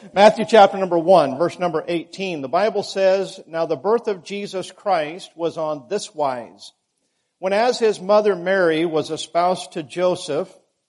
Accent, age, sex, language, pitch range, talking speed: American, 50-69, male, English, 150-200 Hz, 160 wpm